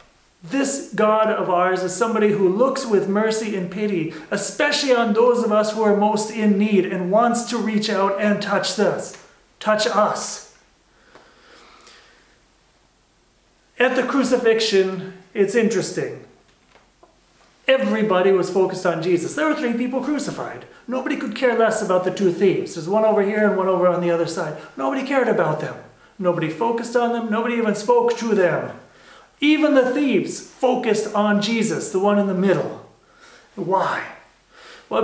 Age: 40-59